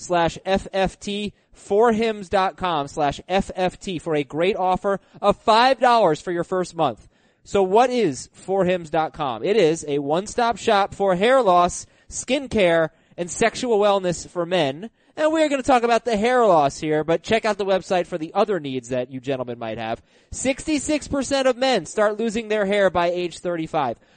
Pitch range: 170-230 Hz